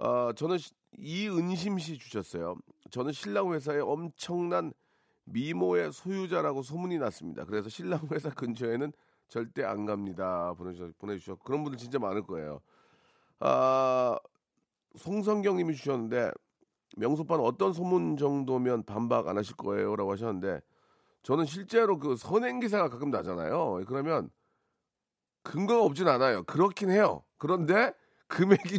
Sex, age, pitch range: male, 40-59, 125-190 Hz